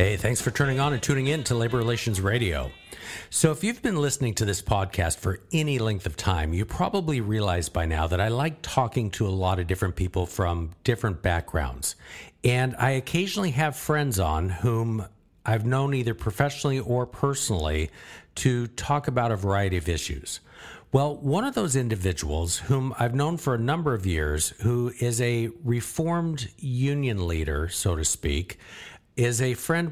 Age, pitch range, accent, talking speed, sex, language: 50-69, 95-140 Hz, American, 175 wpm, male, English